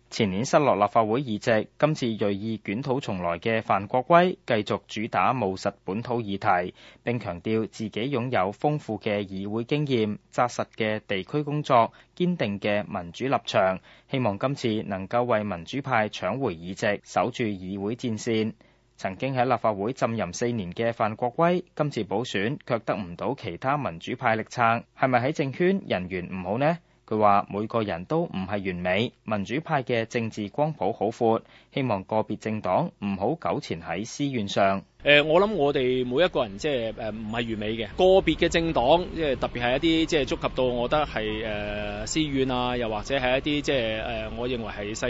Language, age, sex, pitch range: Chinese, 20-39, male, 105-135 Hz